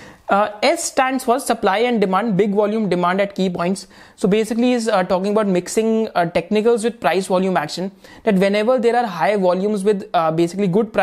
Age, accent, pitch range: 20-39, native, 180-235 Hz